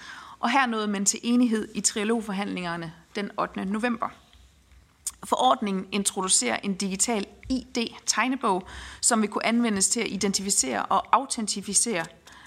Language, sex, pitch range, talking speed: Danish, female, 195-235 Hz, 120 wpm